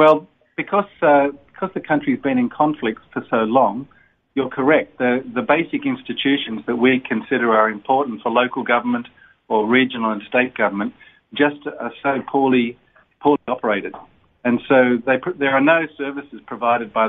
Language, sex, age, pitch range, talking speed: English, male, 40-59, 120-145 Hz, 165 wpm